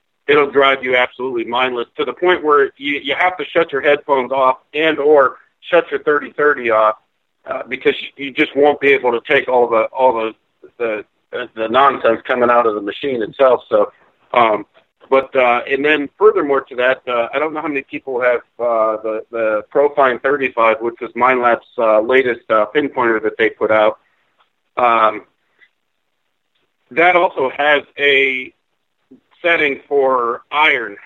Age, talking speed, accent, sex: 40-59, 170 wpm, American, male